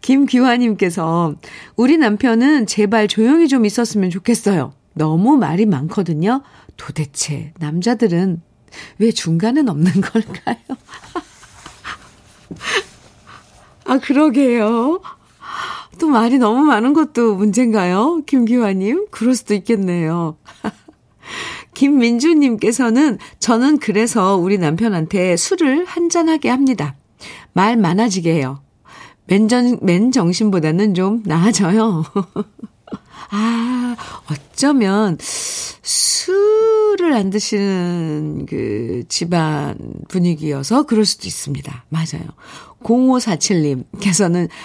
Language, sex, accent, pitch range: Korean, female, native, 170-250 Hz